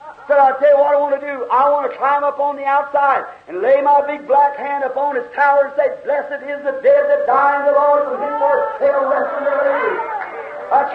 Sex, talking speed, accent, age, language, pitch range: male, 240 wpm, American, 50-69, English, 275-310 Hz